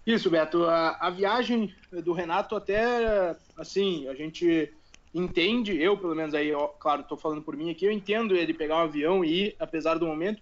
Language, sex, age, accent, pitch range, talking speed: Portuguese, male, 20-39, Brazilian, 160-210 Hz, 190 wpm